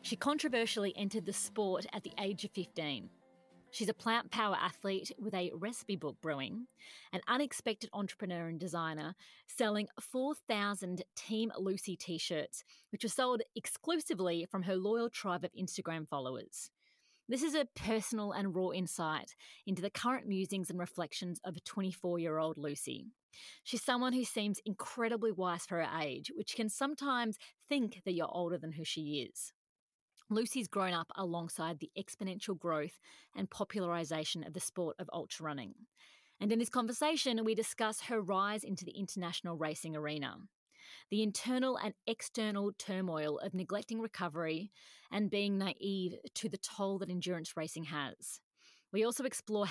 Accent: Australian